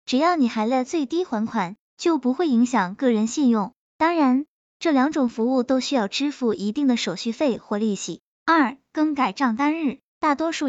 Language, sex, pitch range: Chinese, male, 220-290 Hz